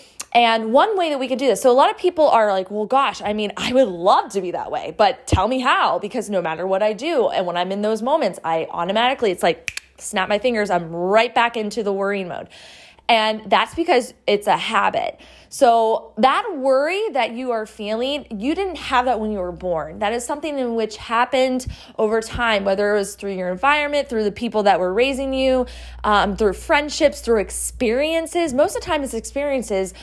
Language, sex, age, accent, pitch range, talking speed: English, female, 20-39, American, 210-280 Hz, 220 wpm